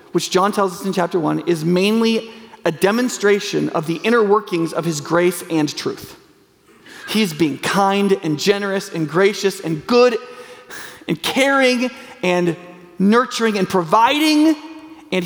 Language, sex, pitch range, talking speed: English, male, 165-210 Hz, 145 wpm